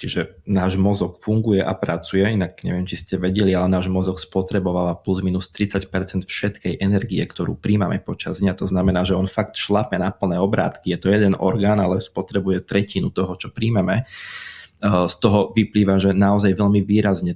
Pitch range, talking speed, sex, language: 95-110 Hz, 175 wpm, male, Slovak